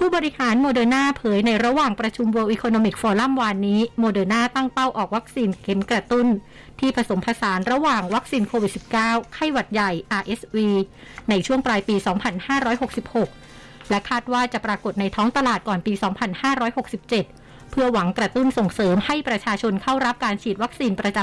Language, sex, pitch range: Thai, female, 205-245 Hz